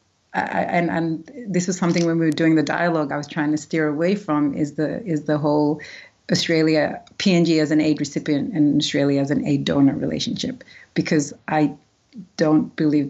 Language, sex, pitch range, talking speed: English, female, 145-170 Hz, 190 wpm